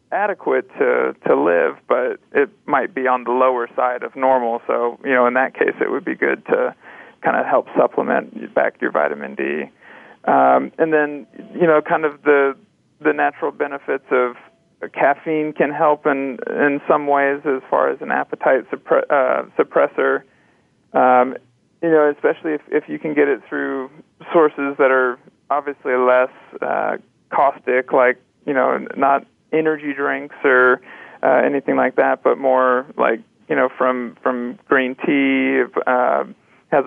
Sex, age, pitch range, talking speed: male, 40-59, 125-145 Hz, 165 wpm